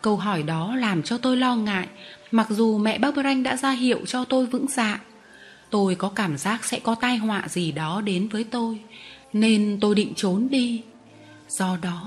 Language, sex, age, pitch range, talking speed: Vietnamese, female, 20-39, 185-230 Hz, 195 wpm